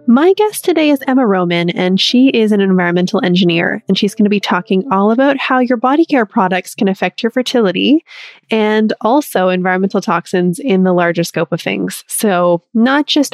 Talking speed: 190 wpm